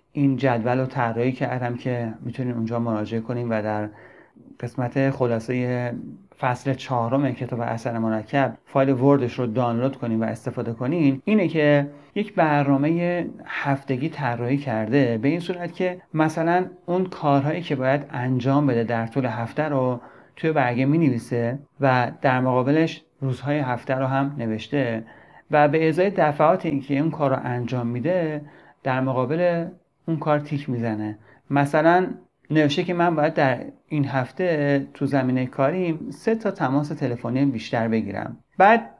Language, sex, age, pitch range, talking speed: Persian, male, 30-49, 125-155 Hz, 150 wpm